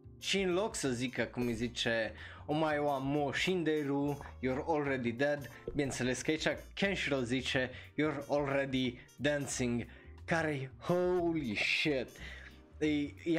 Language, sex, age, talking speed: Romanian, male, 20-39, 140 wpm